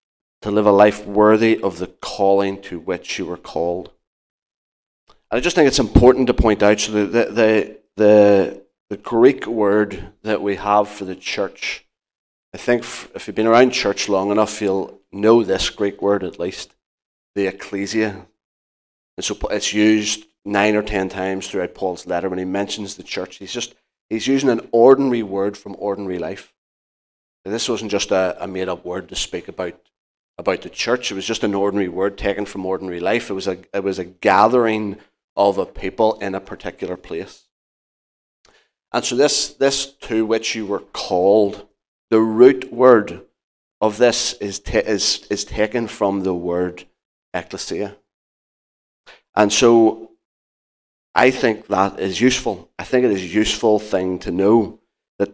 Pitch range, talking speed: 95-110 Hz, 170 wpm